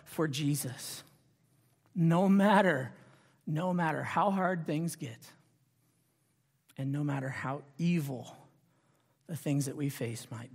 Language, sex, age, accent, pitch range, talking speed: English, male, 40-59, American, 135-180 Hz, 115 wpm